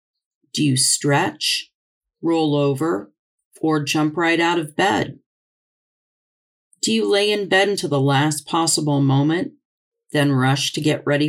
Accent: American